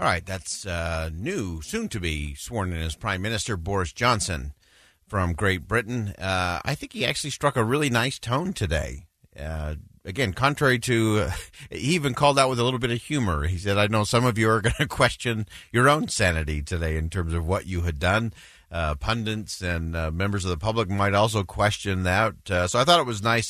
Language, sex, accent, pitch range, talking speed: English, male, American, 90-125 Hz, 215 wpm